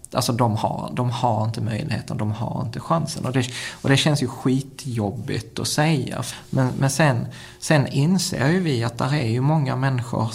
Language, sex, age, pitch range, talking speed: Swedish, male, 20-39, 120-140 Hz, 190 wpm